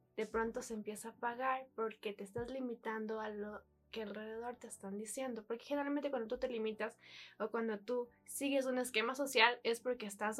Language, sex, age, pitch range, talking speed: Spanish, female, 10-29, 210-255 Hz, 190 wpm